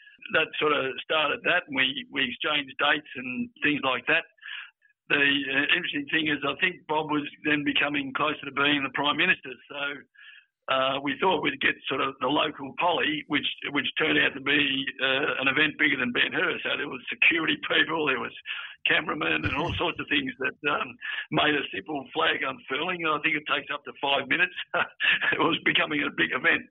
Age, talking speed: 60-79, 200 wpm